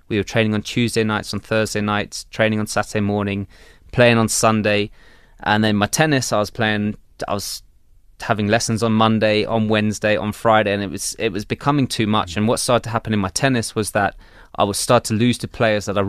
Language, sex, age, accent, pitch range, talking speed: English, male, 20-39, British, 100-115 Hz, 225 wpm